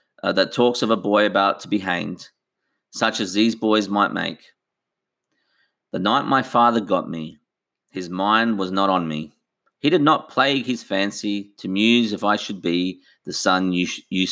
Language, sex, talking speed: English, male, 185 wpm